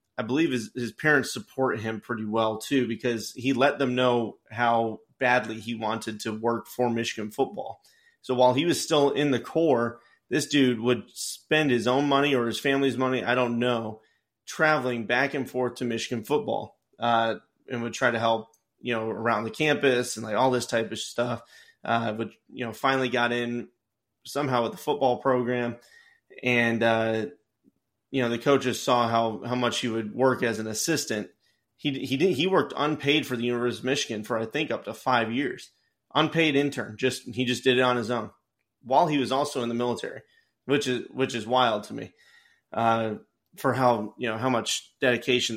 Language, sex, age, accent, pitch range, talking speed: English, male, 30-49, American, 115-135 Hz, 195 wpm